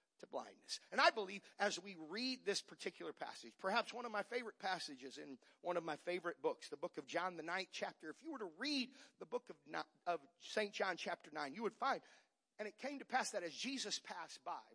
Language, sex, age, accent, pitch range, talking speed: English, male, 50-69, American, 190-260 Hz, 225 wpm